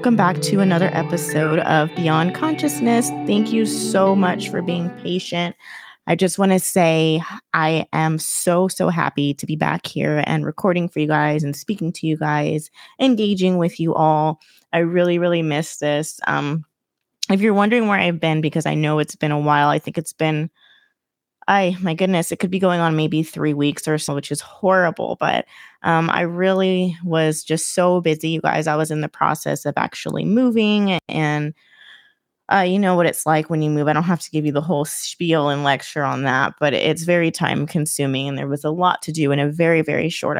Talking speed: 210 wpm